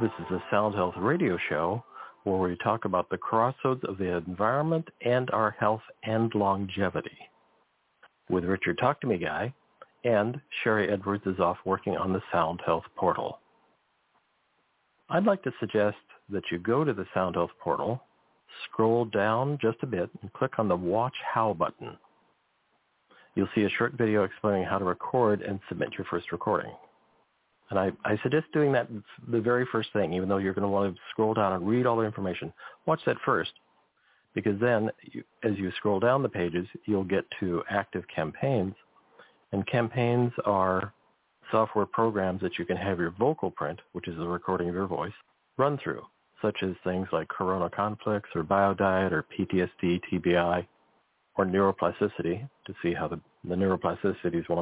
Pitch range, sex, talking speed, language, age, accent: 90-115 Hz, male, 175 wpm, English, 50-69, American